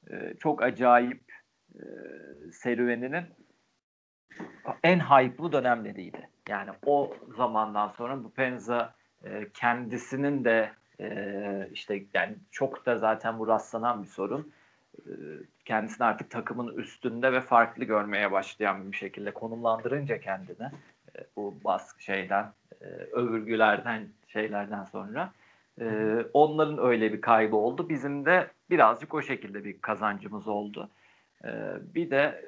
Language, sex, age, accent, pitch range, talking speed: Turkish, male, 40-59, native, 110-145 Hz, 115 wpm